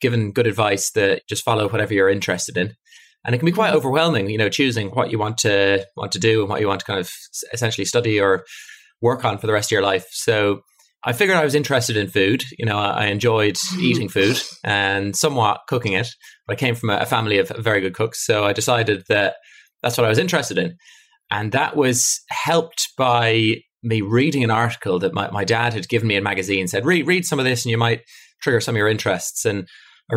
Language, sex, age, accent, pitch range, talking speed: English, male, 20-39, British, 105-125 Hz, 235 wpm